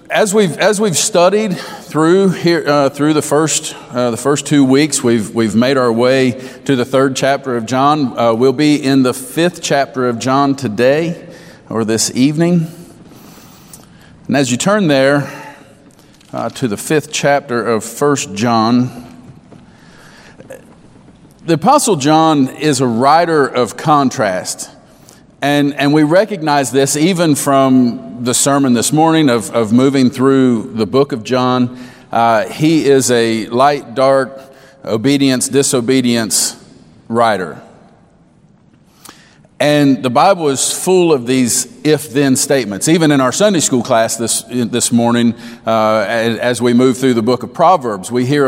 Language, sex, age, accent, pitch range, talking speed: English, male, 40-59, American, 125-150 Hz, 145 wpm